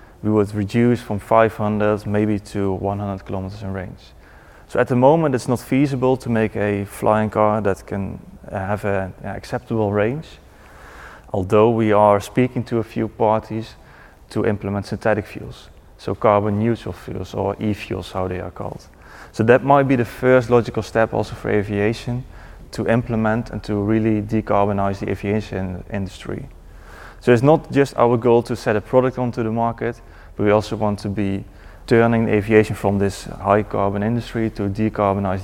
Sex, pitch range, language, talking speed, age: male, 100-115 Hz, English, 170 wpm, 30-49